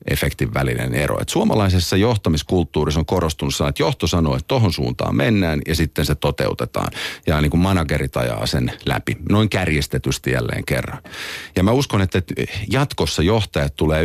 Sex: male